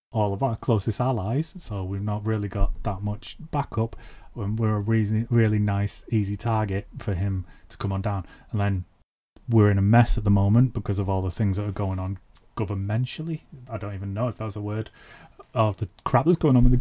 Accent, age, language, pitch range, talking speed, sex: British, 30-49, English, 100-125 Hz, 220 wpm, male